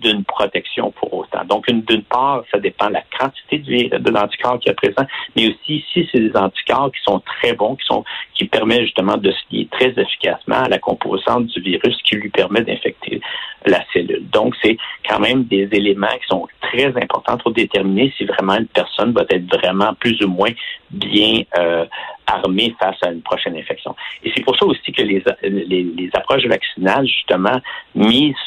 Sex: male